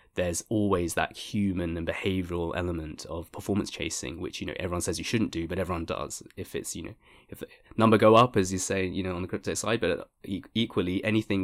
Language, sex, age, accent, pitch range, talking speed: English, male, 20-39, British, 85-95 Hz, 225 wpm